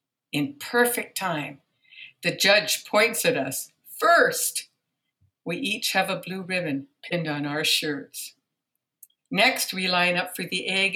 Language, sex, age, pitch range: English, female, 60-79, 165-235 Hz